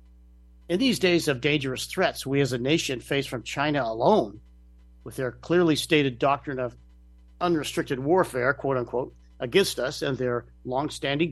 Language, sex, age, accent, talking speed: English, male, 50-69, American, 155 wpm